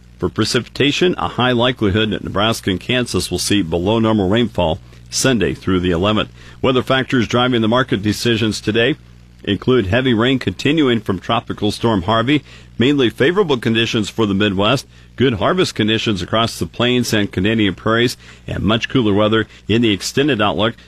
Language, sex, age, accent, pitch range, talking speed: English, male, 50-69, American, 95-120 Hz, 160 wpm